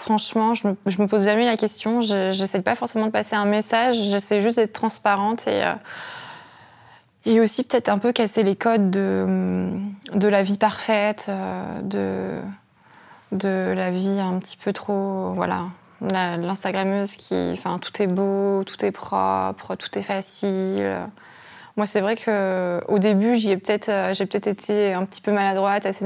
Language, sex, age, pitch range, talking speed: French, female, 20-39, 190-215 Hz, 165 wpm